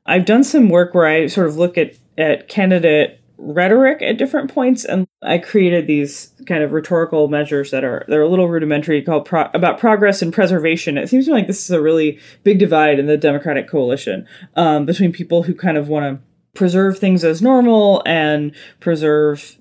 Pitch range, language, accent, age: 155-205 Hz, English, American, 20-39